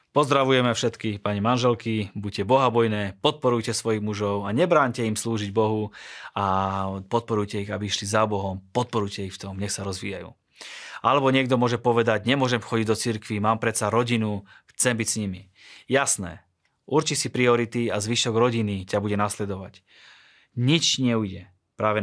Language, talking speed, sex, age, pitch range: Slovak, 155 wpm, male, 20-39, 105-125 Hz